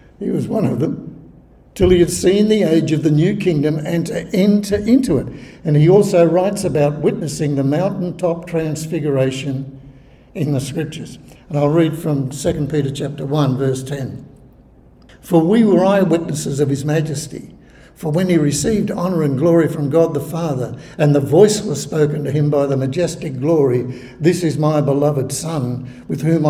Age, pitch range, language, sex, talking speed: 60-79, 140-170 Hz, English, male, 175 wpm